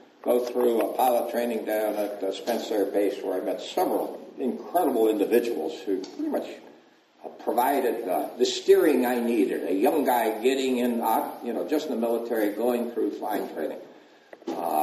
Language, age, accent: English, 60-79, American